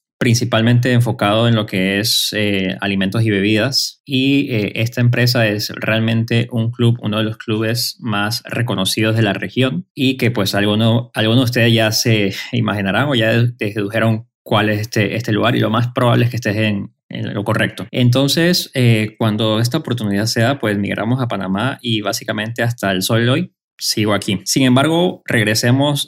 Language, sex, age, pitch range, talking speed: Spanish, male, 20-39, 105-120 Hz, 180 wpm